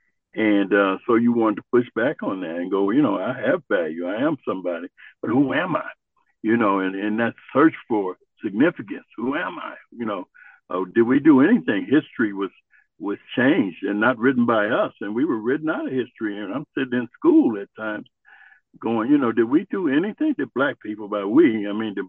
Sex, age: male, 60-79